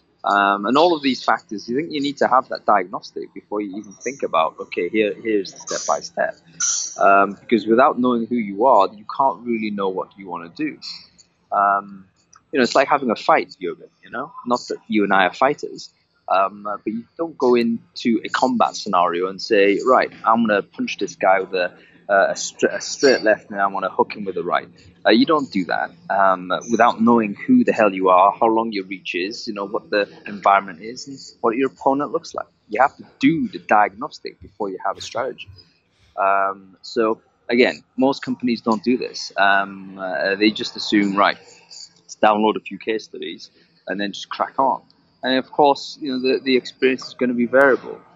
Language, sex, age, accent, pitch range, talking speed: English, male, 20-39, British, 100-130 Hz, 215 wpm